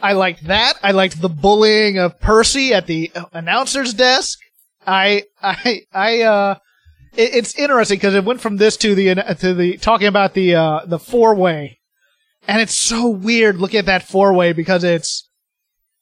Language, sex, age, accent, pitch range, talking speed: English, male, 30-49, American, 190-245 Hz, 175 wpm